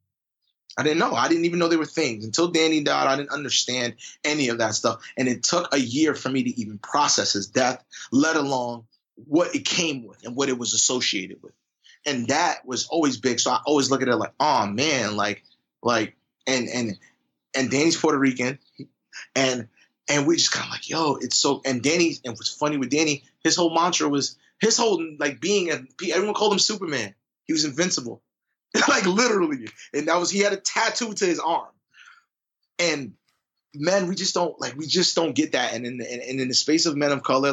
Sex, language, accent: male, English, American